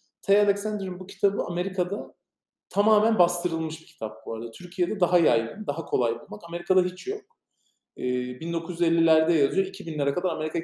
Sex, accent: male, native